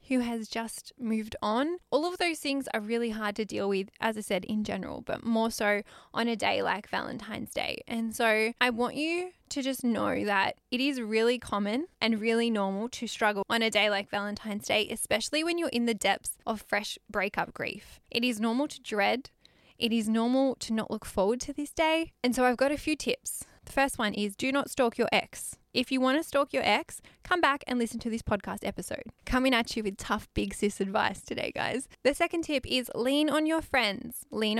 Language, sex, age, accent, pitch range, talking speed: English, female, 10-29, Australian, 220-270 Hz, 220 wpm